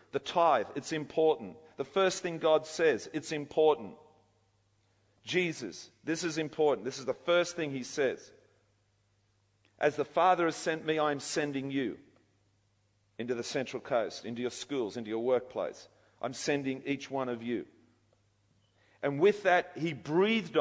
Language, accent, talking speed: English, Australian, 155 wpm